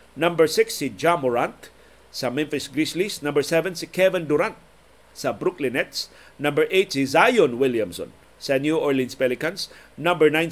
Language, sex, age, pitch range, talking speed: Filipino, male, 50-69, 130-175 Hz, 155 wpm